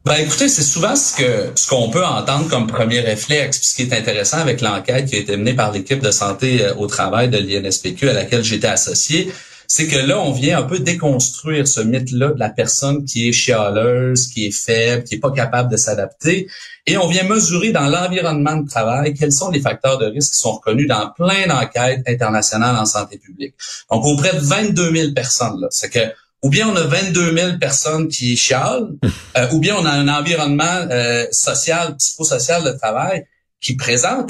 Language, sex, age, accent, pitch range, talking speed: French, male, 30-49, Canadian, 125-165 Hz, 205 wpm